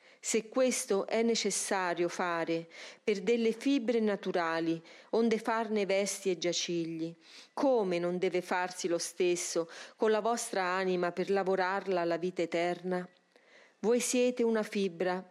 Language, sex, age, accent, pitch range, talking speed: Italian, female, 40-59, native, 180-235 Hz, 130 wpm